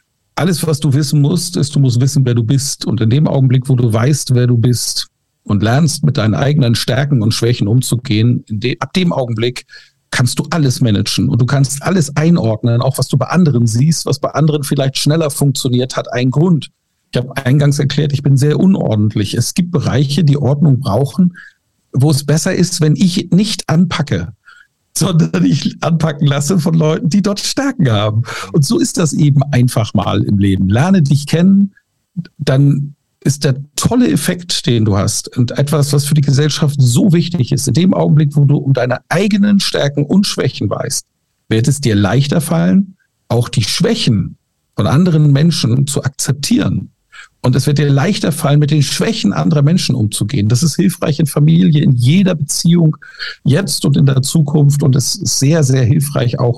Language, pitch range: German, 120-155 Hz